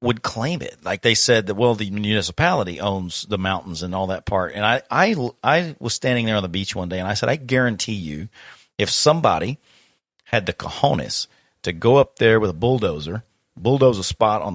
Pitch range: 95-125 Hz